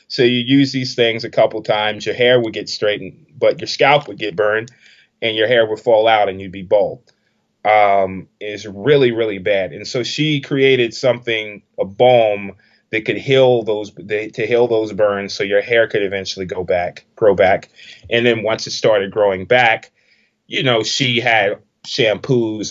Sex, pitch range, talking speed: male, 105-130 Hz, 190 wpm